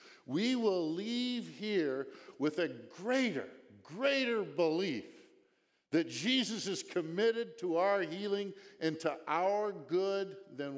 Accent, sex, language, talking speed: American, male, English, 115 wpm